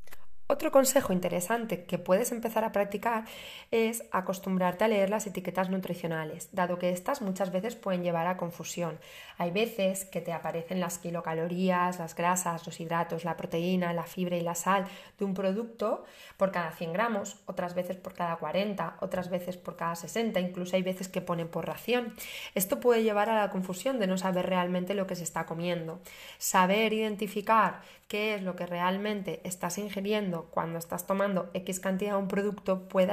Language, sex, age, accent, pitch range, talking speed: Spanish, female, 20-39, Spanish, 175-200 Hz, 180 wpm